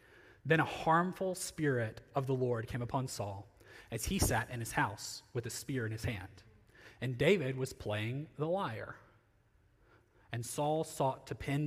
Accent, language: American, English